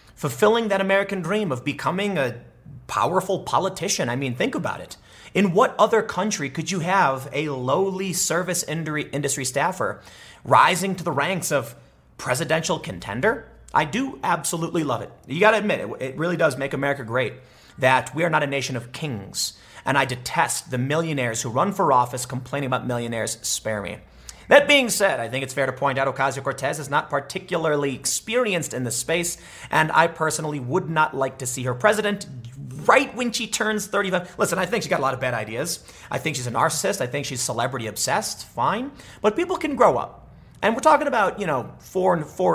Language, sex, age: English, male, 30-49